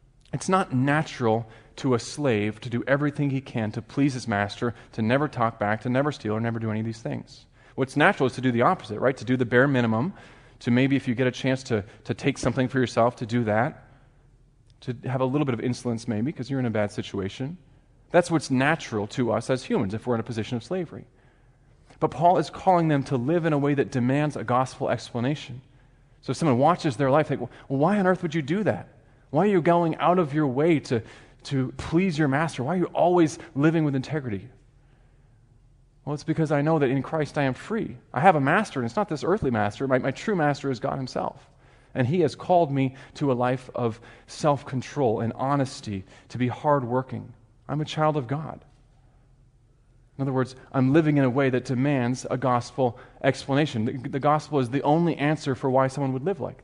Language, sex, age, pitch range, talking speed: English, male, 30-49, 120-145 Hz, 225 wpm